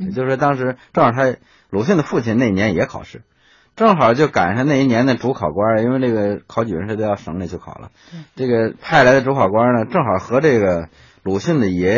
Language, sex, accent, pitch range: Chinese, male, native, 90-120 Hz